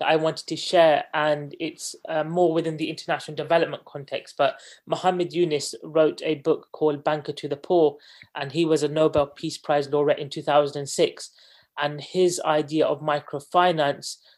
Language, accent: English, British